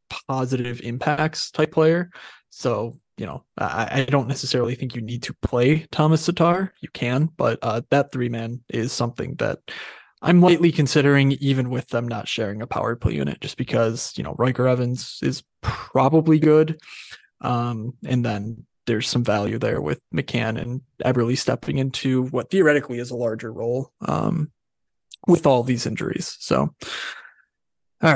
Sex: male